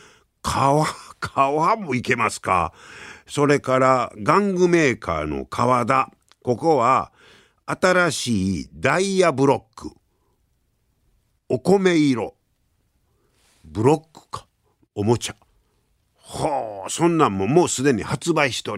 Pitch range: 95-150 Hz